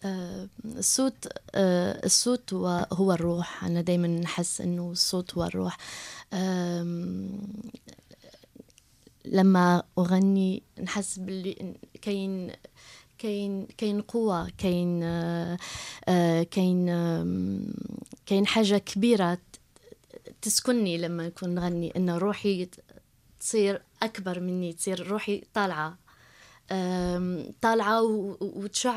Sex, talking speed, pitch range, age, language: female, 85 wpm, 180-215 Hz, 20-39, Arabic